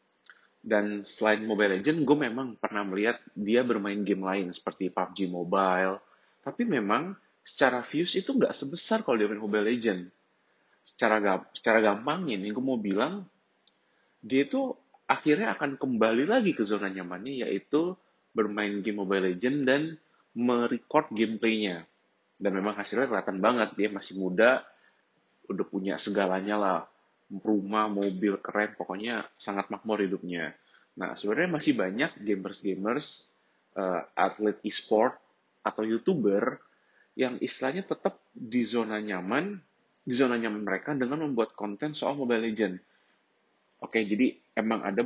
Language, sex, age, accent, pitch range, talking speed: Indonesian, male, 30-49, native, 95-120 Hz, 135 wpm